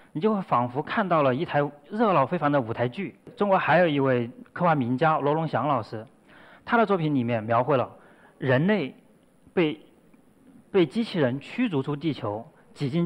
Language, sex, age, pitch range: Chinese, male, 30-49, 120-165 Hz